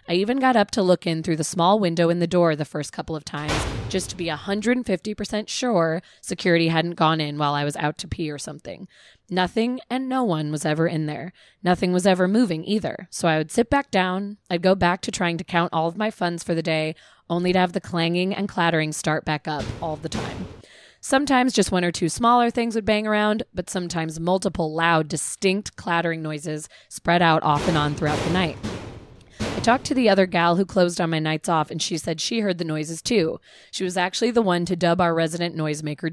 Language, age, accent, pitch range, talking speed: English, 20-39, American, 160-210 Hz, 230 wpm